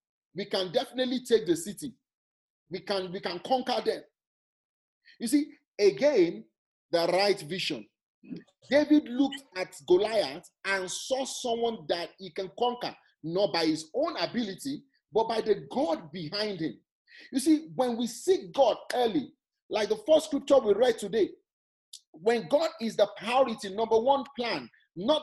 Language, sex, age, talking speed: English, male, 40-59, 150 wpm